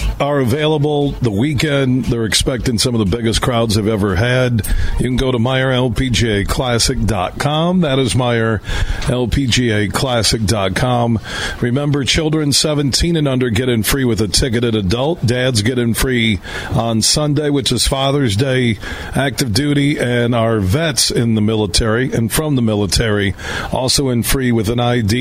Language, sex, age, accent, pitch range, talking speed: English, male, 50-69, American, 110-140 Hz, 150 wpm